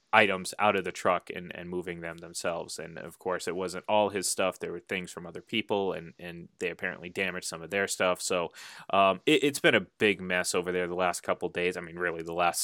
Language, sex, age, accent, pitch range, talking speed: English, male, 20-39, American, 90-105 Hz, 240 wpm